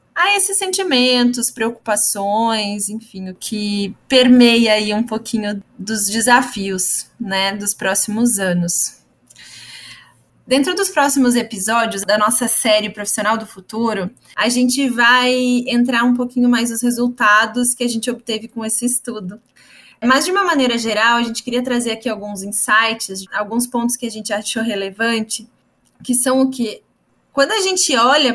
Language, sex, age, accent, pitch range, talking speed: Portuguese, female, 20-39, Brazilian, 215-250 Hz, 145 wpm